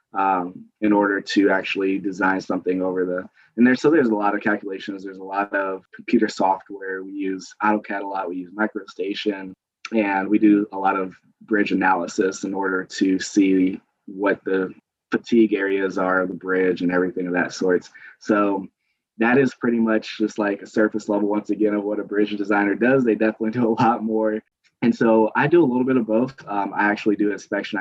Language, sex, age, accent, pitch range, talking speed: English, male, 20-39, American, 95-105 Hz, 205 wpm